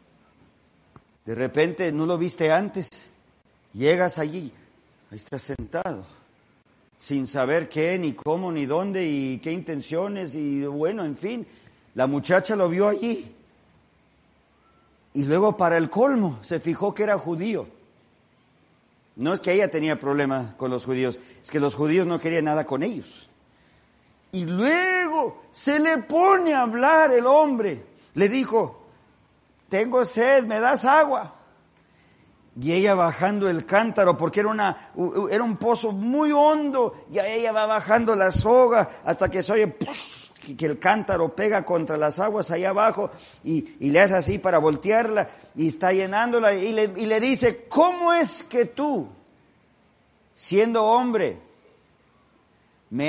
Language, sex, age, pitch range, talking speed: Spanish, male, 50-69, 160-225 Hz, 145 wpm